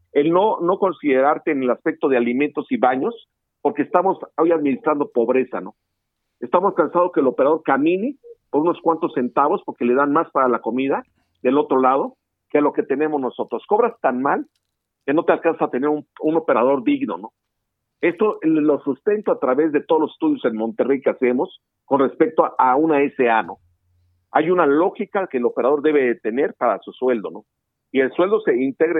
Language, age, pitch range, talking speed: Spanish, 50-69, 125-180 Hz, 190 wpm